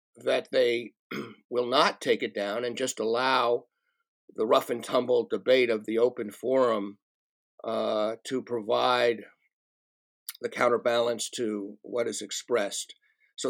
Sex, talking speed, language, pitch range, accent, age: male, 130 wpm, English, 120-155 Hz, American, 50-69